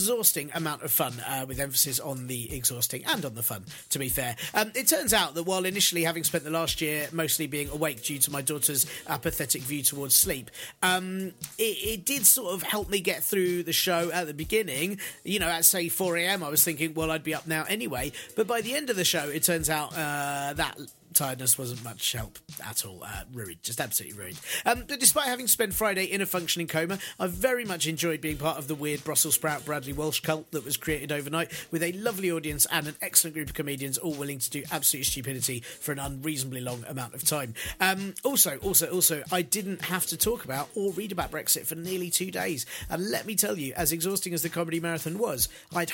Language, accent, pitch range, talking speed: English, British, 145-185 Hz, 230 wpm